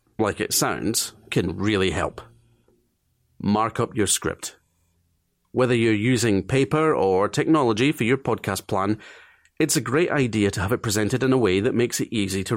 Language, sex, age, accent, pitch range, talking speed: English, male, 40-59, British, 100-130 Hz, 170 wpm